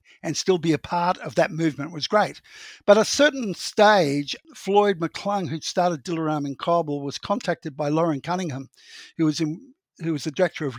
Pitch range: 145-175 Hz